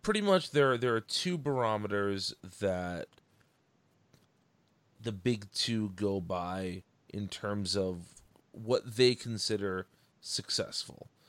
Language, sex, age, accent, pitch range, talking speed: English, male, 30-49, American, 100-125 Hz, 105 wpm